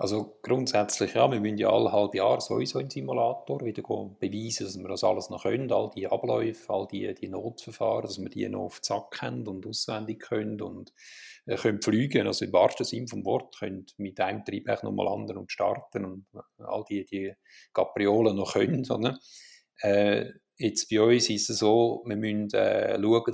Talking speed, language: 195 wpm, German